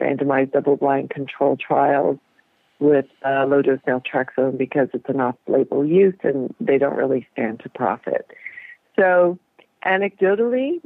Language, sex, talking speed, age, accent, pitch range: English, female, 120 wpm, 50-69, American, 140-190 Hz